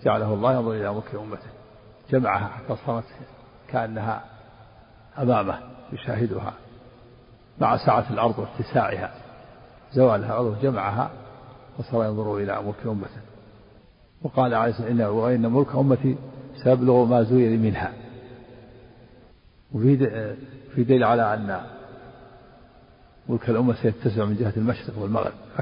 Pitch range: 110-125 Hz